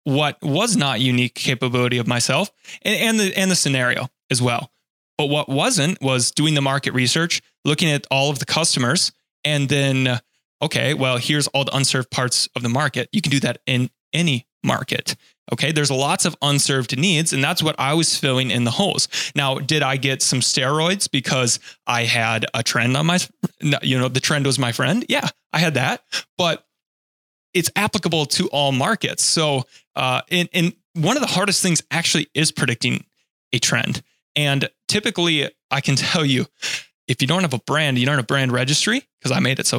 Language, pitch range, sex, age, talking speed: English, 130-175 Hz, male, 20-39, 195 wpm